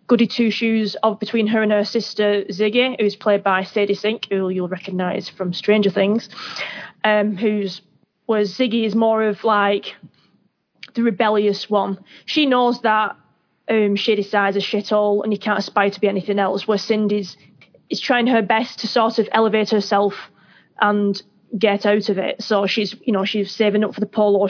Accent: British